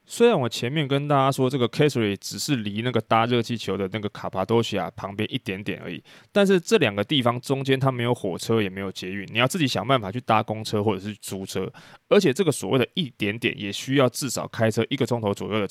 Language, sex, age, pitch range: Chinese, male, 20-39, 105-135 Hz